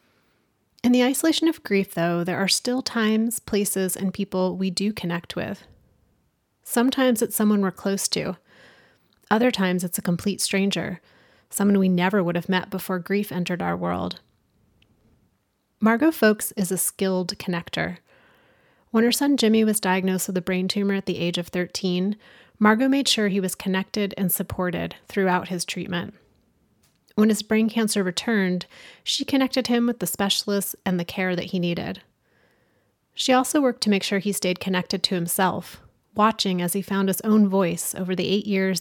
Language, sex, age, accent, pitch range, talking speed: English, female, 30-49, American, 180-215 Hz, 170 wpm